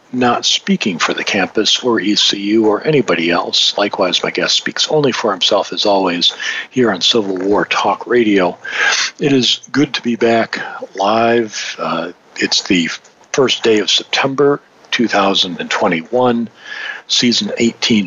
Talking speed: 140 wpm